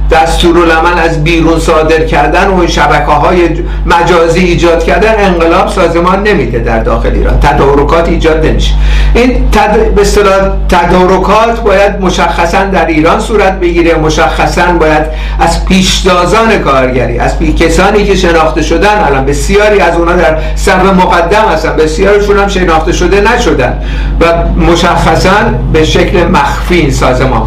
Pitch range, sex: 160-195 Hz, male